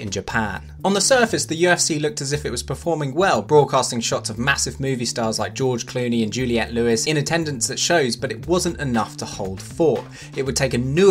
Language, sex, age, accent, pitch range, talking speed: English, male, 20-39, British, 115-145 Hz, 225 wpm